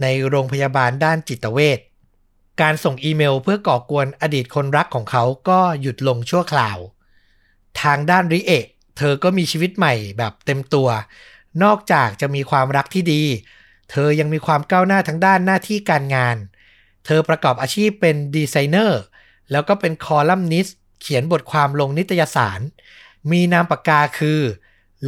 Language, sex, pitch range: Thai, male, 130-165 Hz